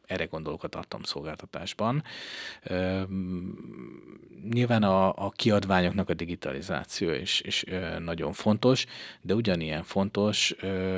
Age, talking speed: 30-49, 115 wpm